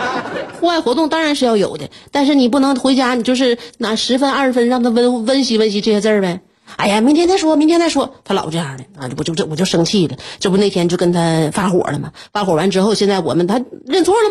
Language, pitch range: Chinese, 190-275 Hz